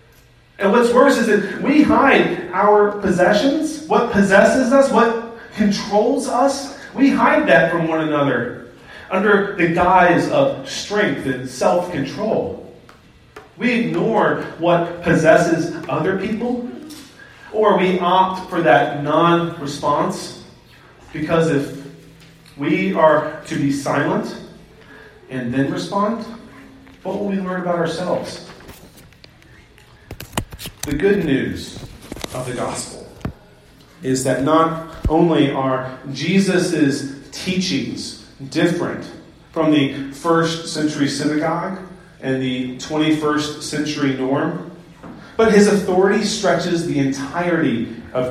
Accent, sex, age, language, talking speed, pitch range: American, male, 30-49, English, 110 wpm, 145-195 Hz